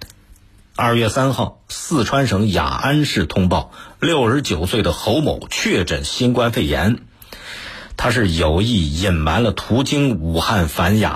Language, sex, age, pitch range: Chinese, male, 50-69, 90-125 Hz